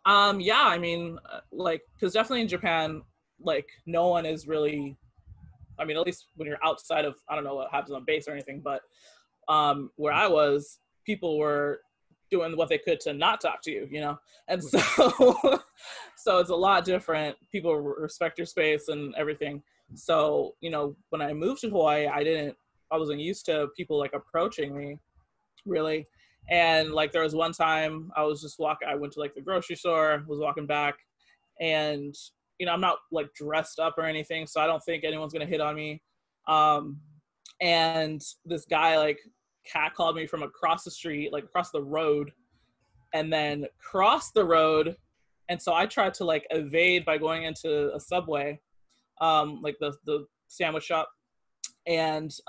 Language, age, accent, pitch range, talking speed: English, 20-39, American, 150-170 Hz, 185 wpm